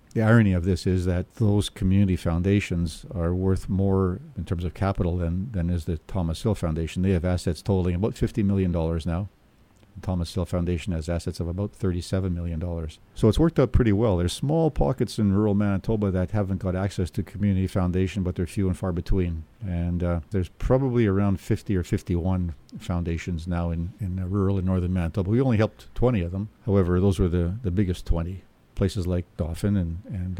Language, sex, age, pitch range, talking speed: English, male, 50-69, 85-100 Hz, 200 wpm